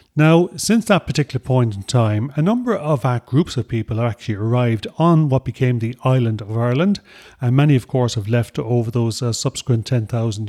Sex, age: male, 40-59